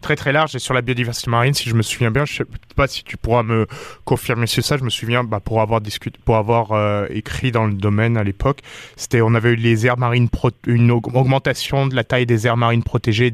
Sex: male